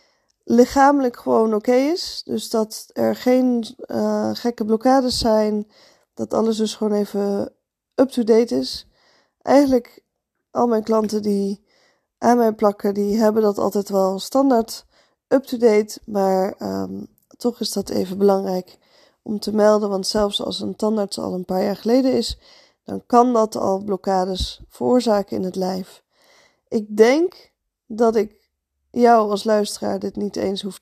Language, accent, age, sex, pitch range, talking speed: Dutch, Dutch, 20-39, female, 195-230 Hz, 145 wpm